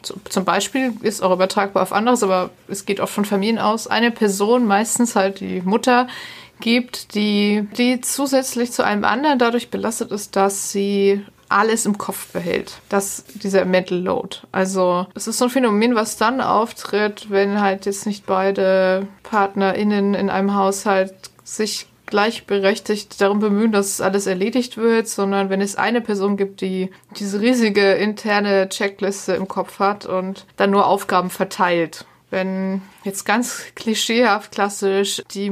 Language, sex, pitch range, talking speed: German, female, 195-235 Hz, 155 wpm